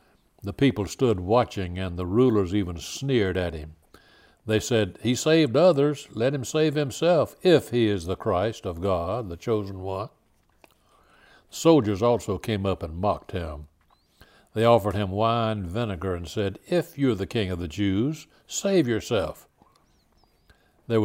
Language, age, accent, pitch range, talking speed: English, 60-79, American, 95-120 Hz, 155 wpm